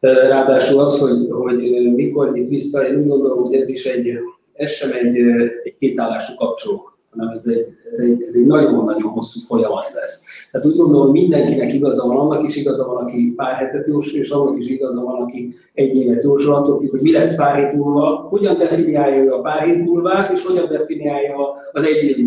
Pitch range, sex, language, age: 125-150 Hz, male, Hungarian, 30-49